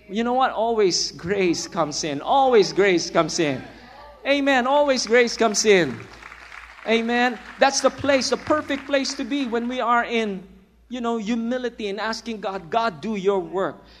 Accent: Filipino